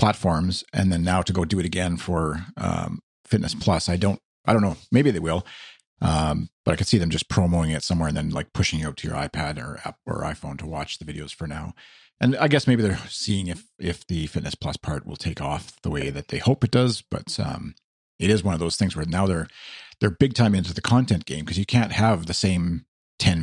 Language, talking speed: English, 250 wpm